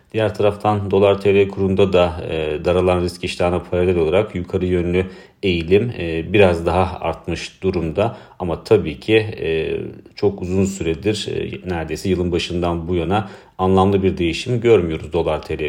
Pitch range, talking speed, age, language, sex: 85-95 Hz, 140 wpm, 40-59, Turkish, male